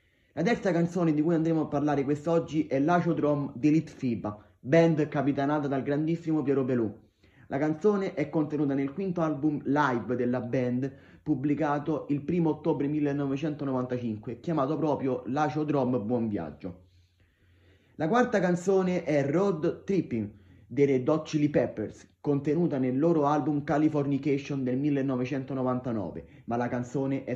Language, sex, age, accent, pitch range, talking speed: Italian, male, 30-49, native, 120-155 Hz, 135 wpm